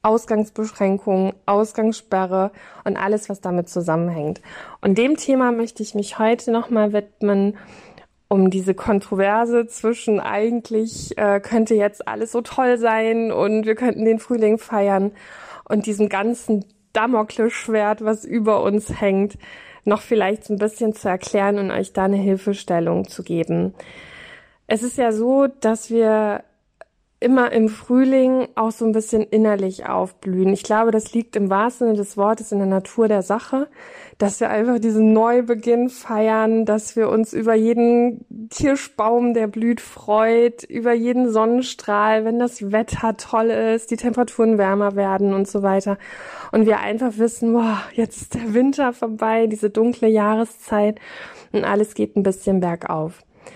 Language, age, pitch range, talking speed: German, 20-39, 205-230 Hz, 150 wpm